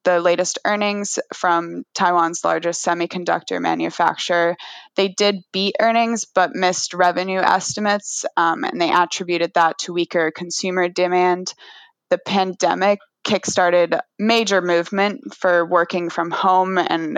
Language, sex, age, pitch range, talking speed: English, female, 20-39, 170-190 Hz, 120 wpm